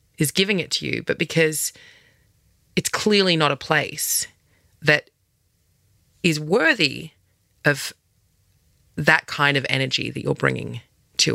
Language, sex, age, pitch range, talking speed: English, female, 30-49, 135-170 Hz, 125 wpm